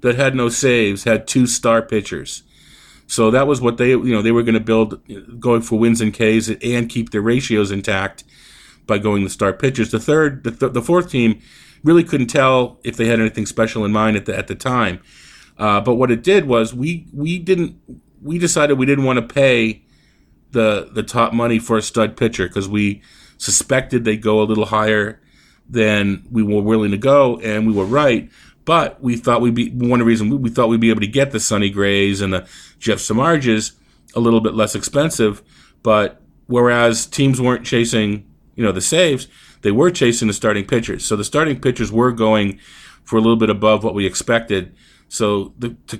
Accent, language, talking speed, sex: American, English, 205 wpm, male